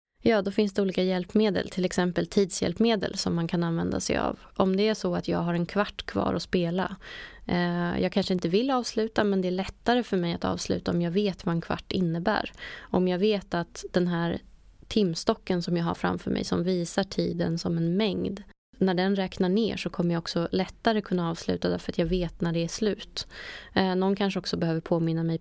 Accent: native